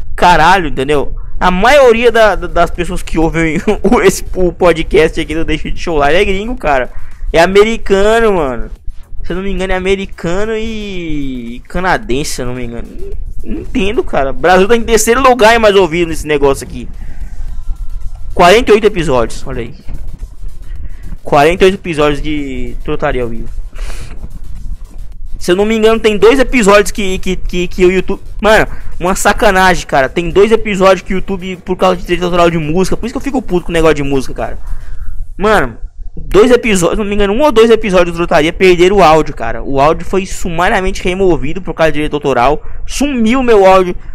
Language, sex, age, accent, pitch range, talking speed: Portuguese, male, 20-39, Brazilian, 140-200 Hz, 185 wpm